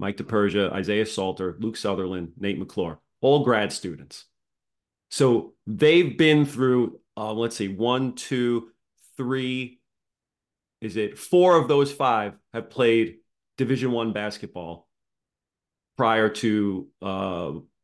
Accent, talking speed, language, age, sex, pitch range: American, 115 wpm, English, 30-49, male, 105-130 Hz